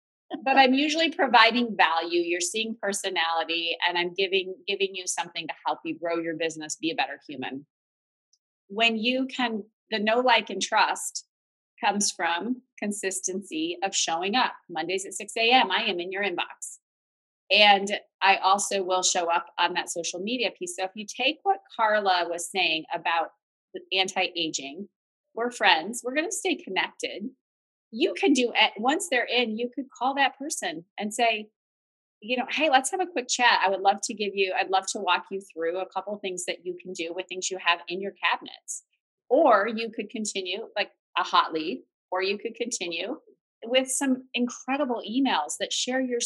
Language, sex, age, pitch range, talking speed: English, female, 30-49, 185-250 Hz, 185 wpm